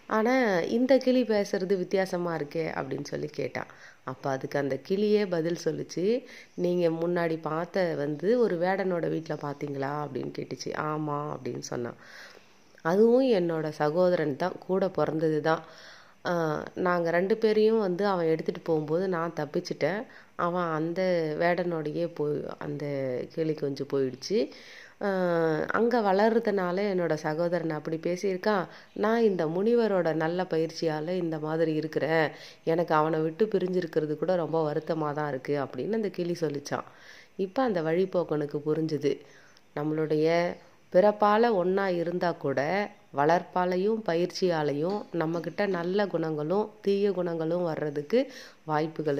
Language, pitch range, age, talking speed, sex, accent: Tamil, 155-195 Hz, 30-49, 120 wpm, female, native